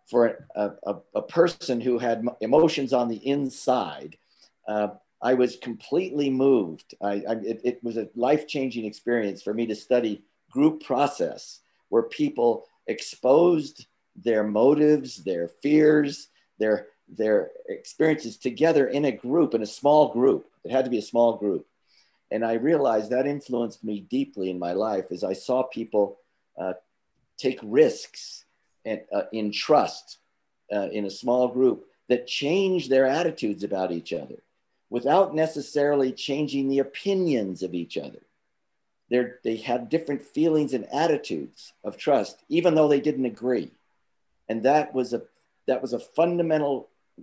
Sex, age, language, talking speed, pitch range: male, 50-69, English, 140 wpm, 110-150 Hz